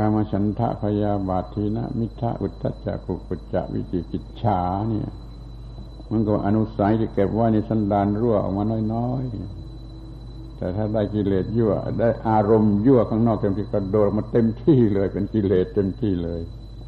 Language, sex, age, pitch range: Thai, male, 70-89, 100-115 Hz